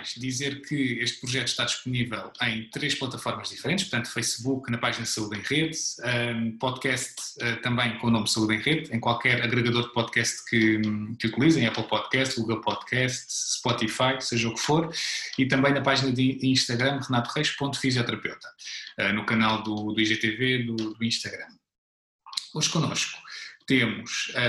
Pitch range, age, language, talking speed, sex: 115-140 Hz, 20-39, Portuguese, 160 wpm, male